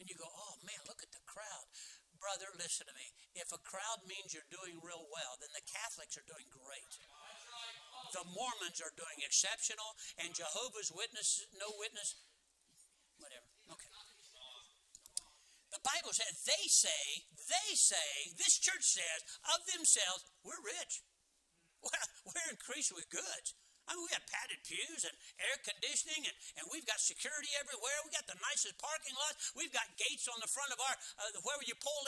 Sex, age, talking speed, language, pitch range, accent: male, 60-79, 170 wpm, English, 185-285 Hz, American